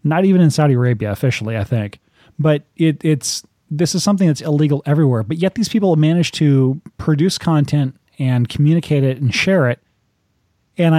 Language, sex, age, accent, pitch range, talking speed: English, male, 30-49, American, 125-160 Hz, 180 wpm